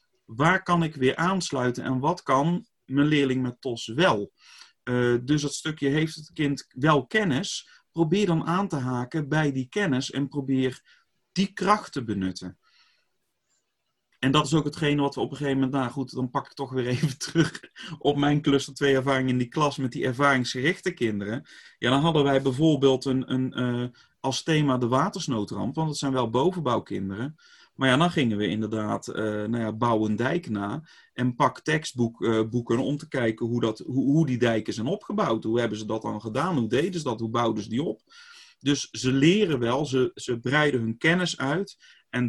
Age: 30-49